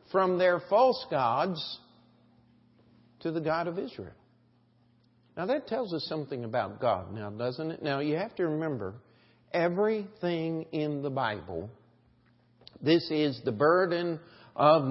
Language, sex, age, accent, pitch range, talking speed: English, male, 50-69, American, 120-185 Hz, 135 wpm